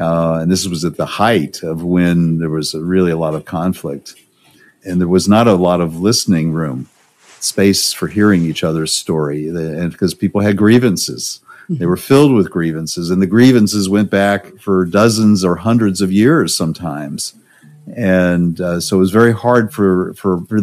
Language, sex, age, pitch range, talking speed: English, male, 50-69, 90-110 Hz, 185 wpm